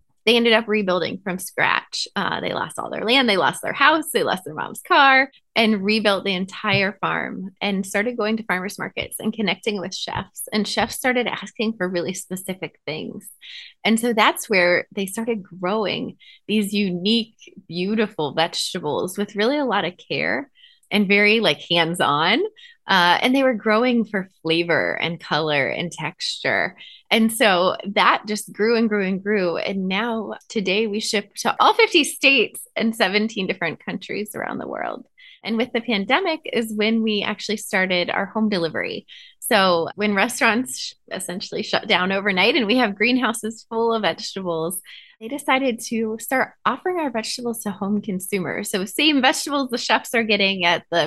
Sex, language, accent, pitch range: female, English, American, 190-235 Hz